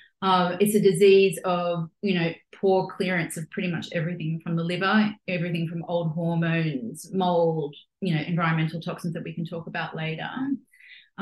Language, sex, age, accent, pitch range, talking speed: English, female, 30-49, Australian, 165-195 Hz, 170 wpm